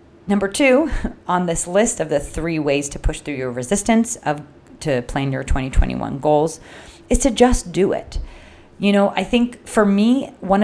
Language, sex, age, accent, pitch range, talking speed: English, female, 30-49, American, 145-195 Hz, 180 wpm